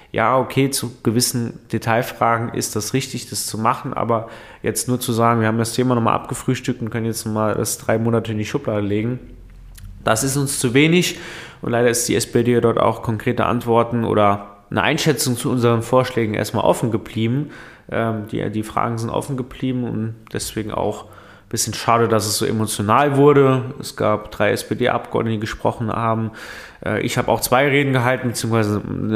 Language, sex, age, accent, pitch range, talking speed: German, male, 20-39, German, 105-125 Hz, 180 wpm